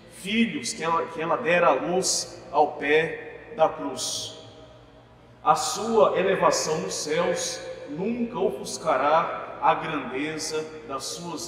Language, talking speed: Portuguese, 120 wpm